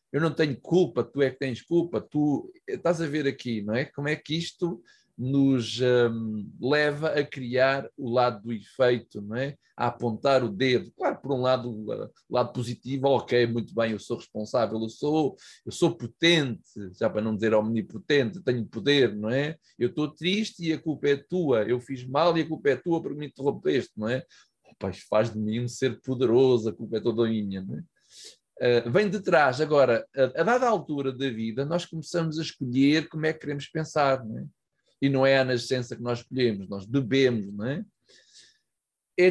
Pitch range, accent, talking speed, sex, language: 120-155 Hz, Brazilian, 205 wpm, male, Portuguese